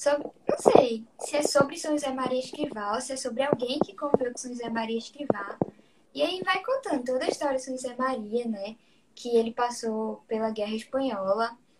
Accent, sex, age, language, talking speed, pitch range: Brazilian, female, 10-29, Portuguese, 200 wpm, 225-280 Hz